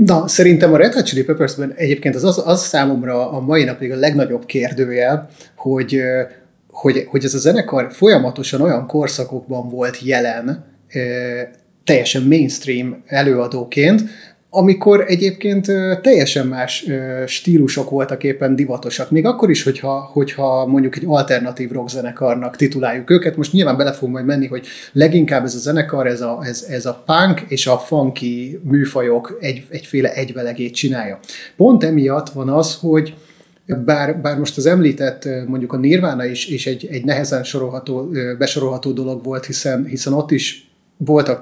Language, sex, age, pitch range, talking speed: Hungarian, male, 30-49, 130-155 Hz, 140 wpm